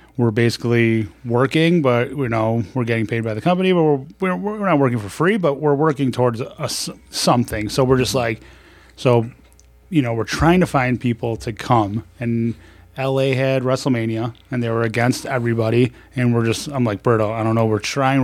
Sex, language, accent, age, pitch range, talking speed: male, English, American, 30-49, 115-135 Hz, 200 wpm